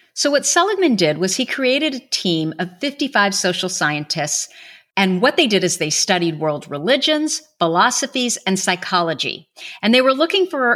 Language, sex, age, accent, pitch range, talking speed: English, female, 50-69, American, 170-240 Hz, 165 wpm